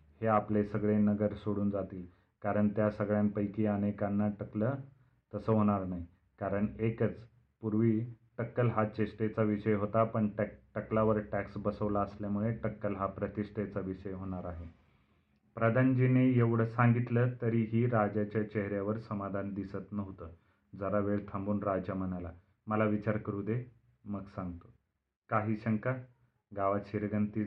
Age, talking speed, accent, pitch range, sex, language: 30-49, 130 wpm, native, 105-120 Hz, male, Marathi